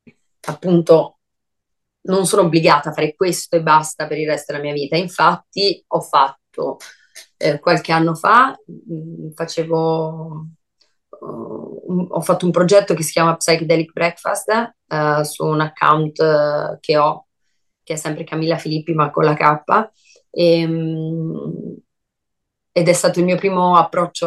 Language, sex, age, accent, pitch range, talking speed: Italian, female, 30-49, native, 160-185 Hz, 145 wpm